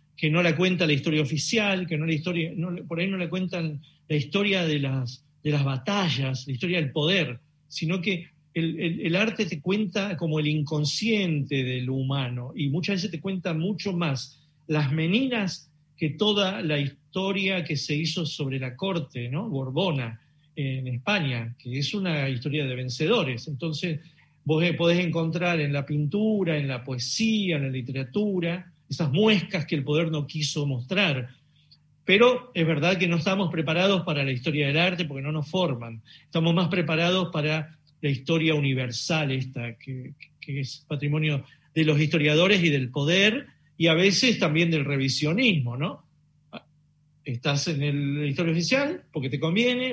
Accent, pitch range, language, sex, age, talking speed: Argentinian, 145-175 Hz, Spanish, male, 40-59, 170 wpm